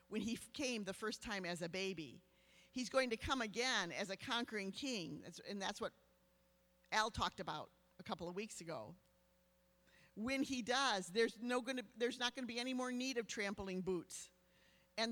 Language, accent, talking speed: English, American, 185 wpm